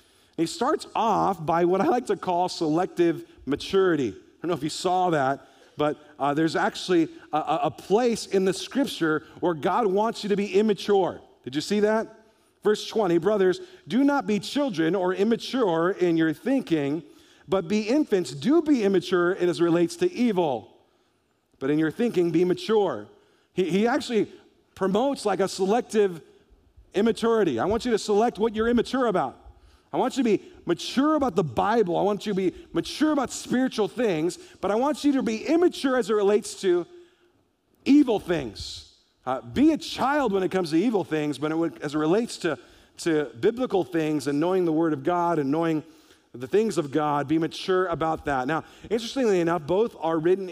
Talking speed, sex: 185 wpm, male